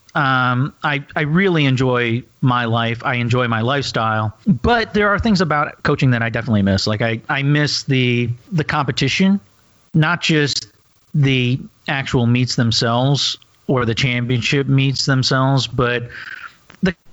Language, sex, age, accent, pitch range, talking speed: English, male, 40-59, American, 120-145 Hz, 145 wpm